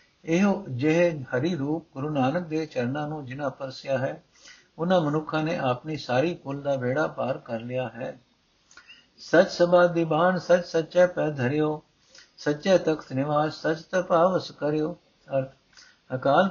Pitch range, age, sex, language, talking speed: 135-170 Hz, 60-79, male, Punjabi, 140 wpm